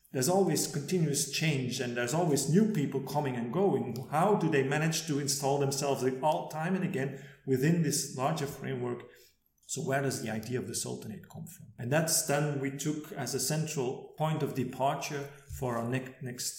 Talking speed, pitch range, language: 190 wpm, 130-155 Hz, English